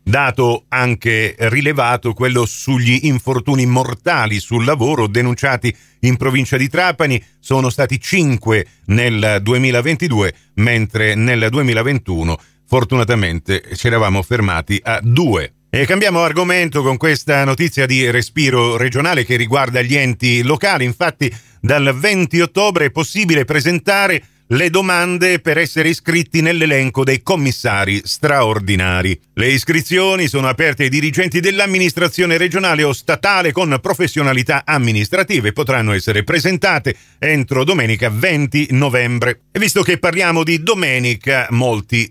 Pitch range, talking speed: 115-160 Hz, 125 wpm